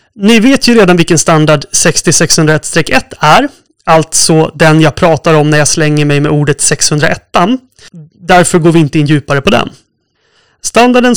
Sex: male